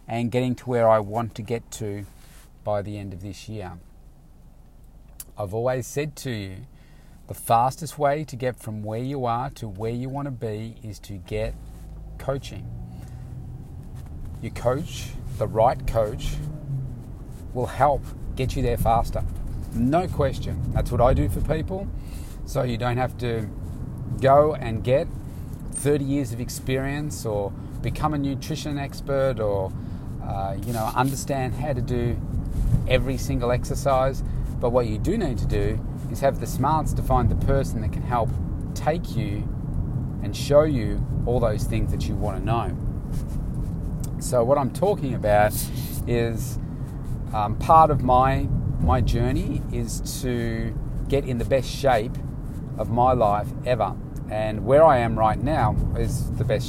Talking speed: 160 wpm